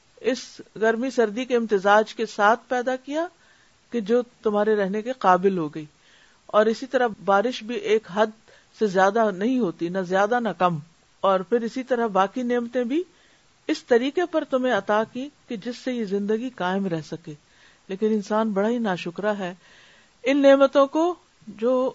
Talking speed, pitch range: 170 wpm, 185-235 Hz